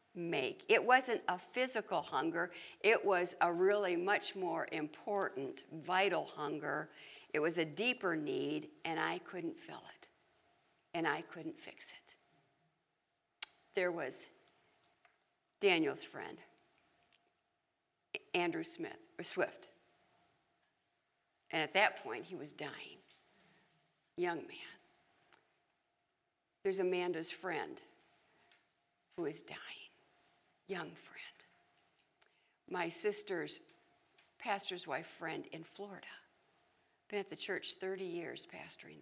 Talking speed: 105 wpm